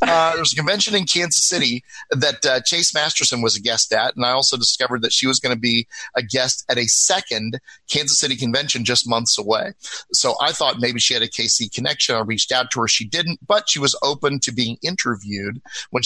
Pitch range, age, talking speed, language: 115-130 Hz, 30-49, 230 wpm, English